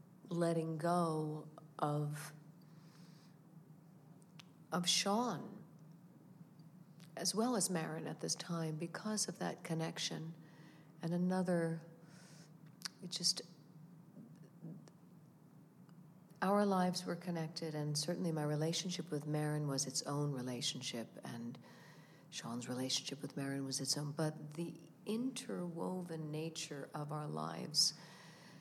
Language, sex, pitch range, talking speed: English, female, 150-175 Hz, 105 wpm